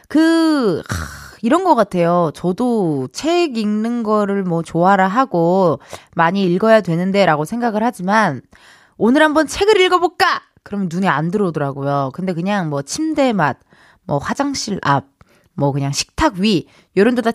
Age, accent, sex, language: 20-39, native, female, Korean